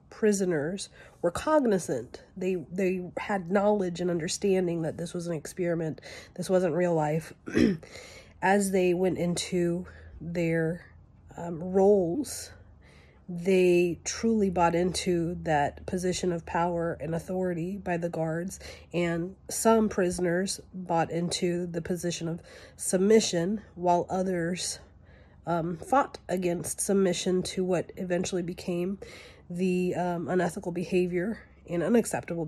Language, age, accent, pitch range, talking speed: English, 30-49, American, 170-190 Hz, 115 wpm